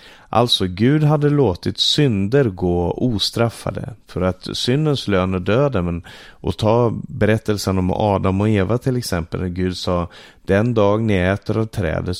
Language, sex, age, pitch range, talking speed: Swedish, male, 30-49, 90-115 Hz, 155 wpm